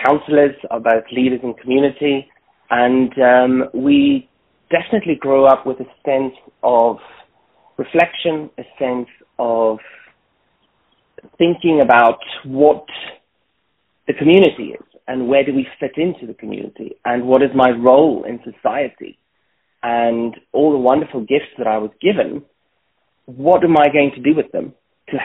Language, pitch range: English, 120-140 Hz